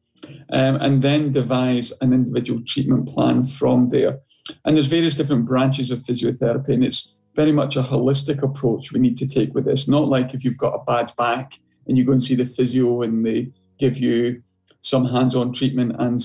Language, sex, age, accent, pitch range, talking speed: English, male, 40-59, British, 125-140 Hz, 195 wpm